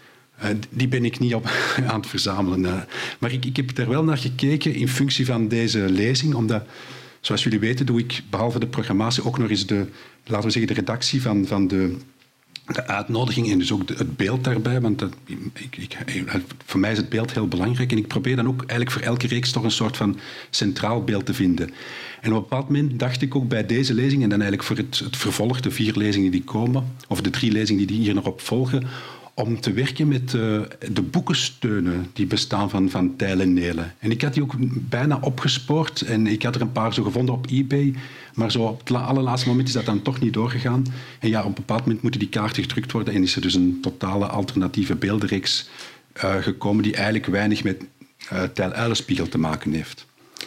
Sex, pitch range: male, 105-130 Hz